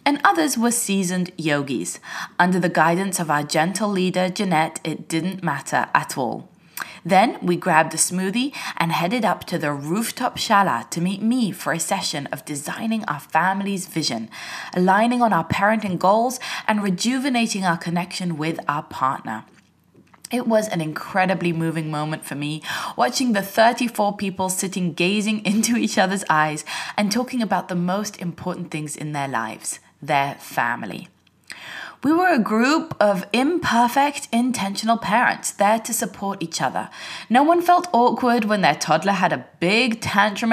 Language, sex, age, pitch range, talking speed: English, female, 20-39, 170-230 Hz, 160 wpm